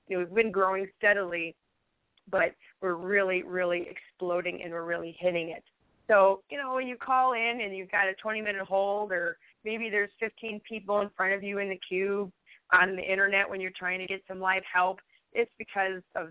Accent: American